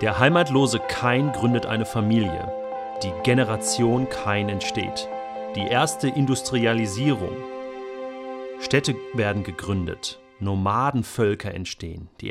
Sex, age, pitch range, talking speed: male, 40-59, 100-130 Hz, 95 wpm